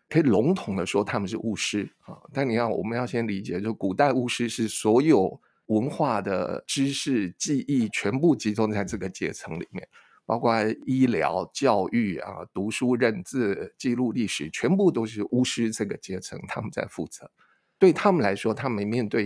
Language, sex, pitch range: Chinese, male, 110-155 Hz